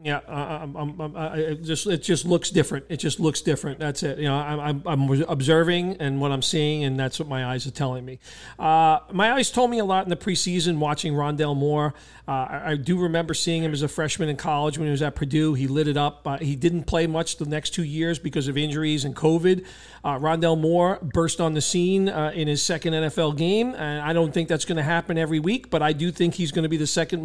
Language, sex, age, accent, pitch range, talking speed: English, male, 40-59, American, 150-170 Hz, 250 wpm